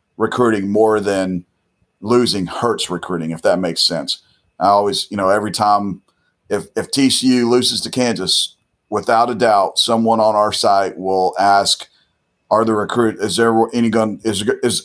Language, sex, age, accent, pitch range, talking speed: English, male, 40-59, American, 95-115 Hz, 160 wpm